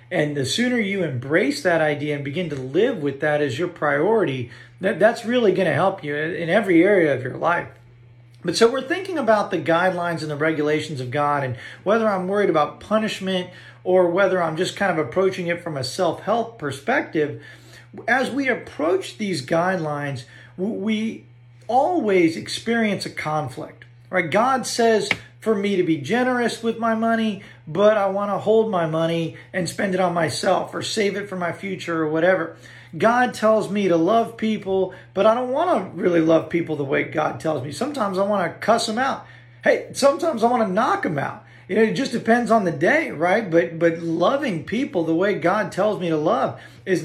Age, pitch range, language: 40-59, 155-220 Hz, English